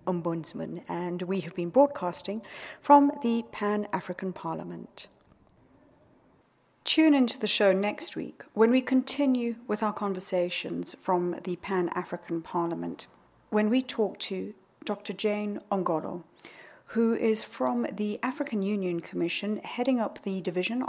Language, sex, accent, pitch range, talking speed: English, female, British, 175-215 Hz, 125 wpm